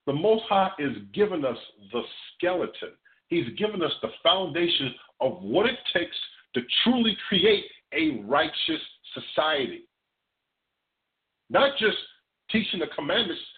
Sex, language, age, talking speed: male, English, 50-69, 125 wpm